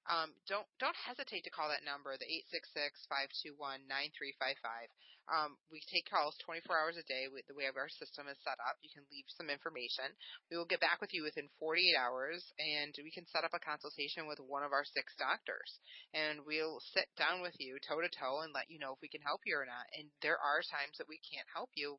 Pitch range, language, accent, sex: 140-170 Hz, English, American, female